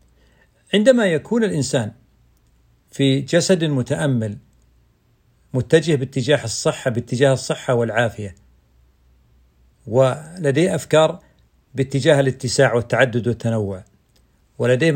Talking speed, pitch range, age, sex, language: 75 wpm, 115-170 Hz, 50-69, male, Arabic